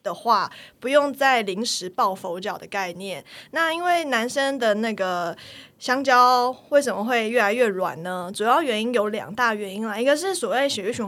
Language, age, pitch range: Chinese, 20-39, 190-250 Hz